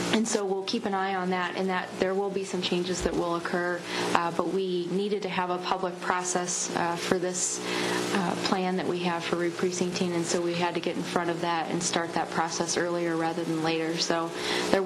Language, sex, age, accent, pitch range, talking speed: English, female, 20-39, American, 170-195 Hz, 230 wpm